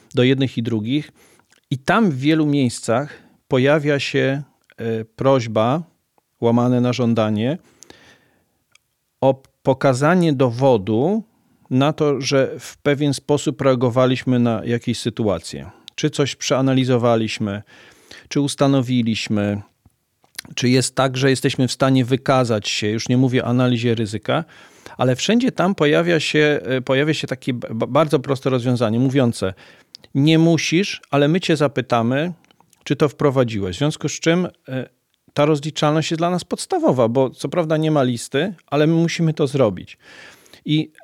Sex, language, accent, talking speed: male, Polish, native, 135 wpm